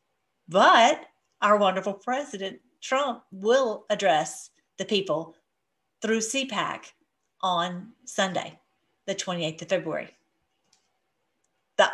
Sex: female